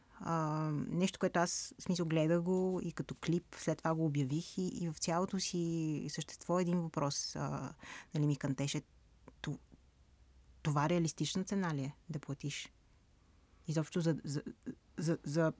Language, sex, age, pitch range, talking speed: Bulgarian, female, 30-49, 155-195 Hz, 155 wpm